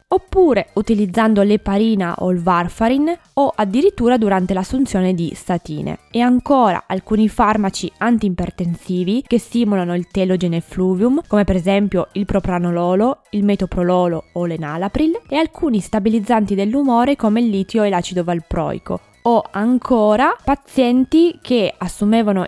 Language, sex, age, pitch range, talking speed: Italian, female, 20-39, 185-235 Hz, 125 wpm